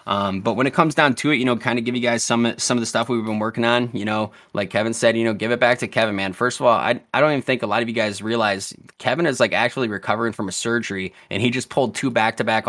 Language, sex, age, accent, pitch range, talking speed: English, male, 20-39, American, 105-115 Hz, 315 wpm